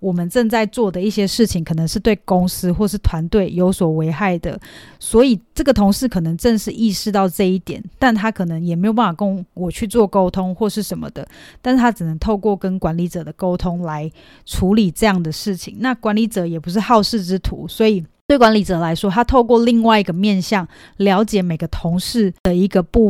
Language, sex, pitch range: Chinese, female, 180-225 Hz